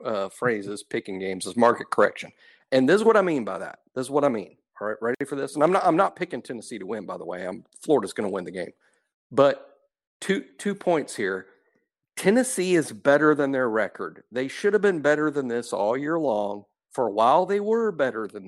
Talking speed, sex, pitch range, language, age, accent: 230 wpm, male, 120-185 Hz, English, 50-69, American